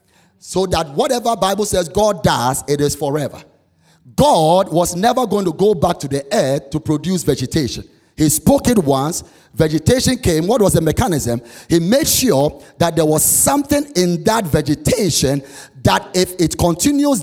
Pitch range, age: 120-180 Hz, 30-49